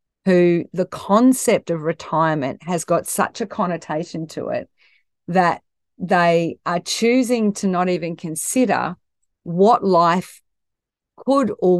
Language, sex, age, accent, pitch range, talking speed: English, female, 40-59, Australian, 165-200 Hz, 120 wpm